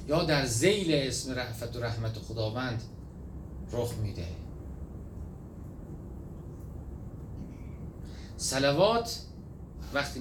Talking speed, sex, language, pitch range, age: 75 wpm, male, Persian, 115-190 Hz, 40-59